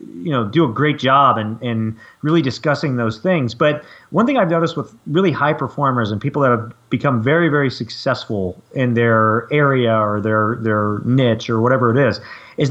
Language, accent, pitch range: English, American, 115-160 Hz